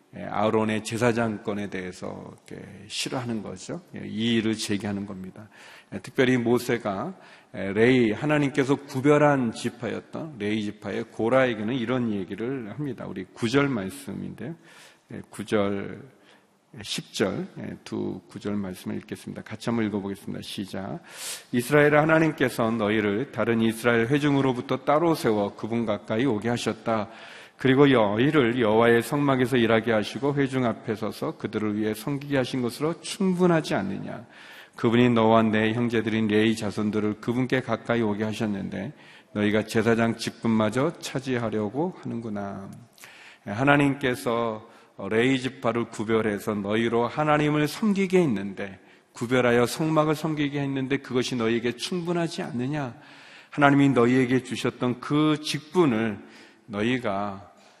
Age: 40-59